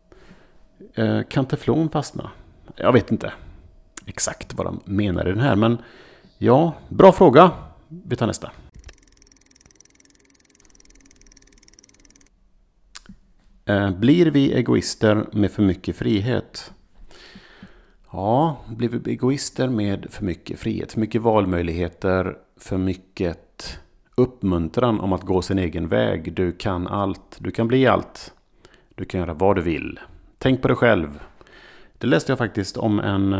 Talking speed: 125 wpm